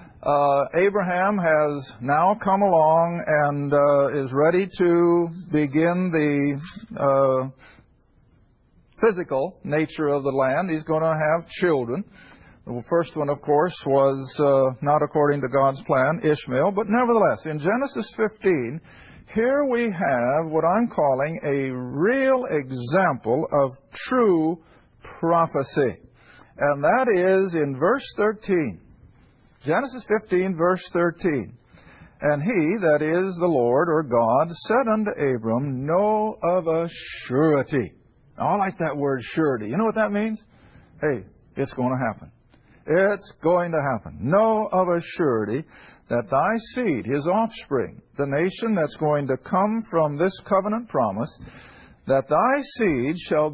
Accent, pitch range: American, 140-190 Hz